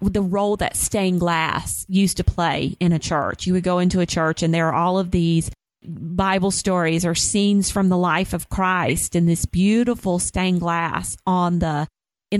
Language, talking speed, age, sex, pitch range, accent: English, 195 wpm, 30-49, female, 170-210 Hz, American